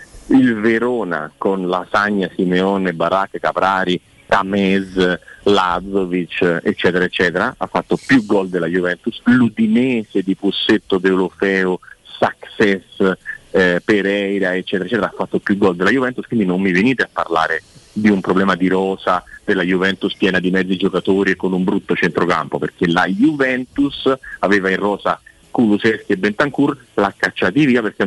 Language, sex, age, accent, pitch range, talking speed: Italian, male, 30-49, native, 90-110 Hz, 140 wpm